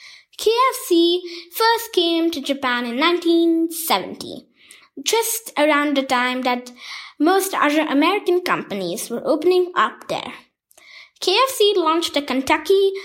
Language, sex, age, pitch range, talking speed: English, female, 20-39, 275-360 Hz, 110 wpm